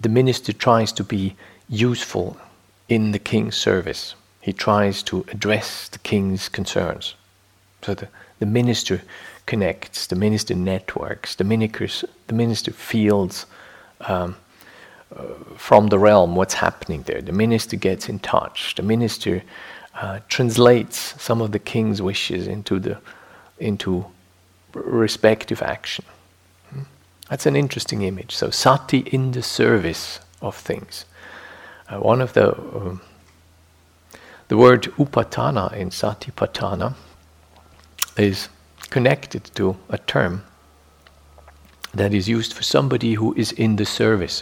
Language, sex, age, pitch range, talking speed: English, male, 50-69, 85-115 Hz, 125 wpm